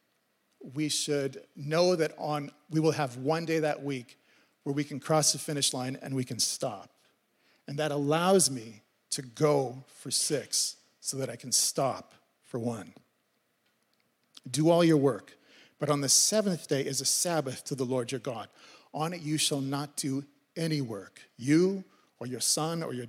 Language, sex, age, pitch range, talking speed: English, male, 40-59, 140-165 Hz, 180 wpm